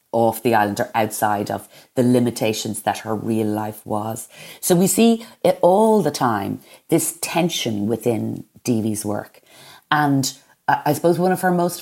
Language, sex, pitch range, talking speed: English, female, 110-150 Hz, 160 wpm